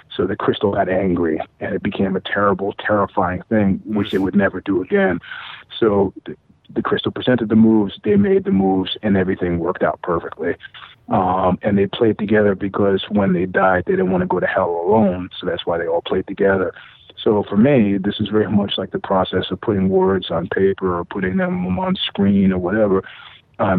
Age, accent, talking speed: 40-59, American, 205 wpm